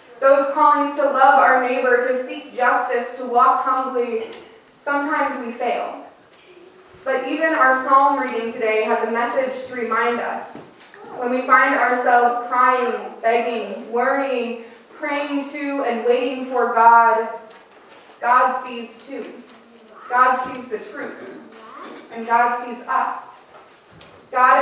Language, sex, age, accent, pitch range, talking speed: English, female, 20-39, American, 240-280 Hz, 125 wpm